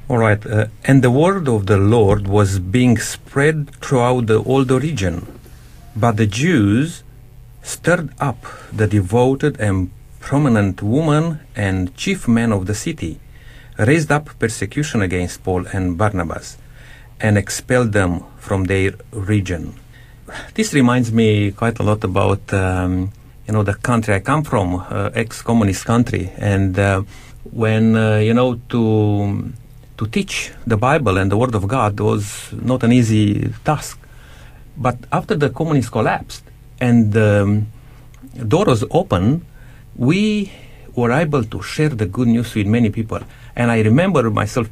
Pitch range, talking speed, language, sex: 105-130 Hz, 145 wpm, English, male